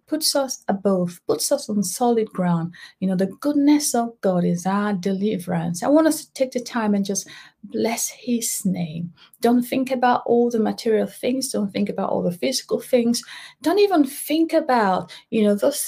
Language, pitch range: English, 185-250 Hz